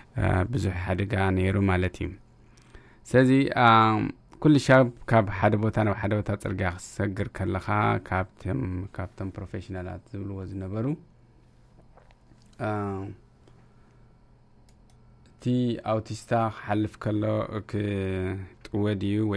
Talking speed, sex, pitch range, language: 85 wpm, male, 100-115 Hz, English